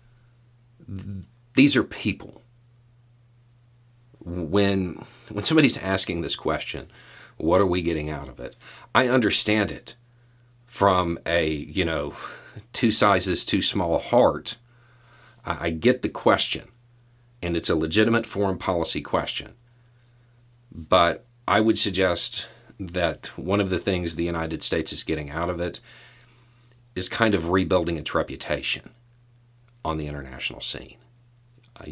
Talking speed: 125 wpm